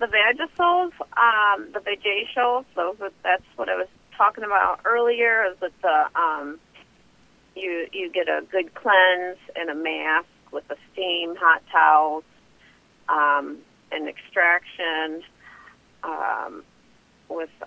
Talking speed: 120 wpm